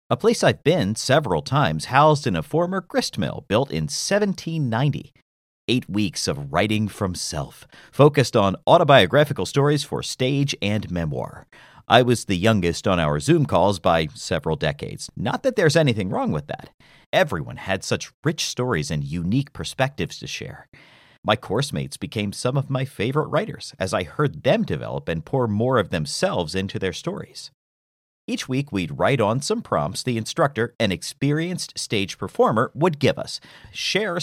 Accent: American